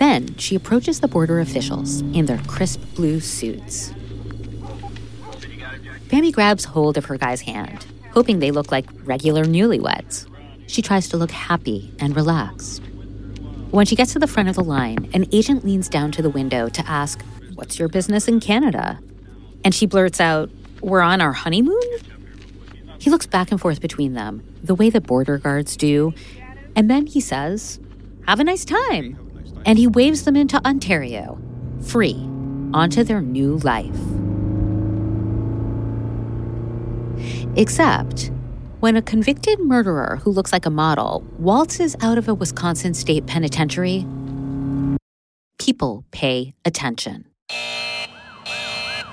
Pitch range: 115-195 Hz